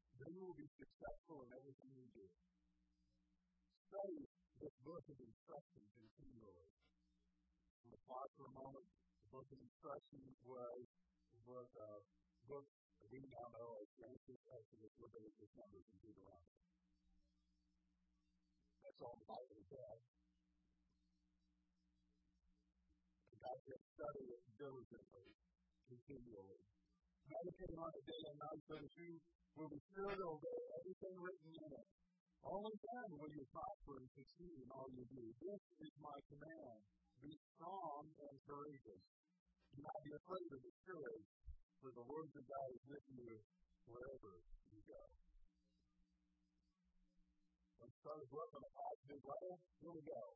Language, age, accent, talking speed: English, 50-69, American, 130 wpm